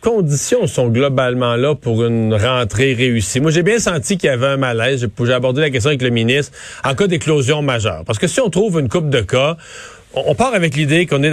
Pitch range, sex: 120-155 Hz, male